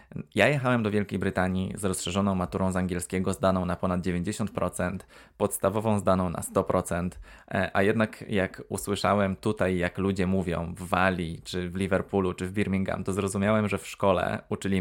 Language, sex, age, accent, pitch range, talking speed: Polish, male, 20-39, native, 90-100 Hz, 160 wpm